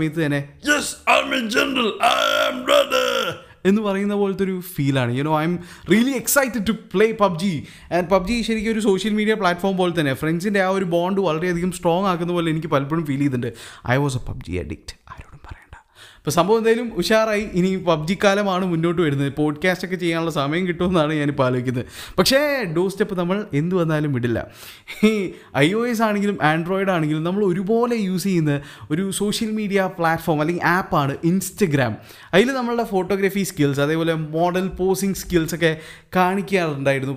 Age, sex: 20-39, male